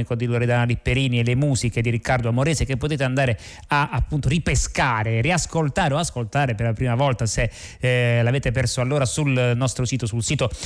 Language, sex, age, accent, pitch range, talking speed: Italian, male, 30-49, native, 120-140 Hz, 180 wpm